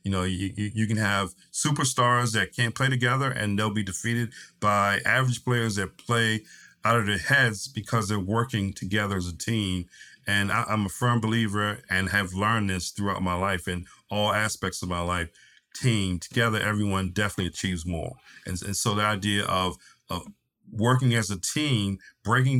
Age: 50-69